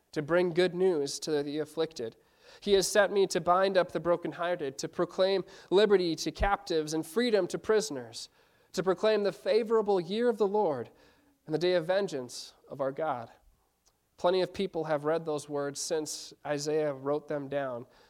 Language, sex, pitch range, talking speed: English, male, 160-195 Hz, 175 wpm